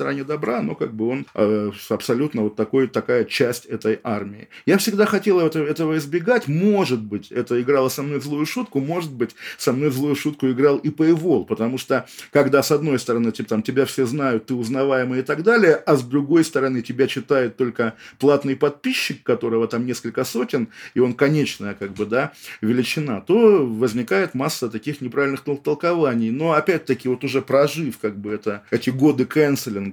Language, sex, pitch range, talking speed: Russian, male, 110-140 Hz, 185 wpm